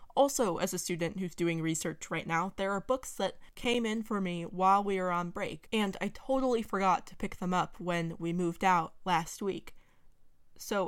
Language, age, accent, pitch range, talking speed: English, 20-39, American, 175-220 Hz, 205 wpm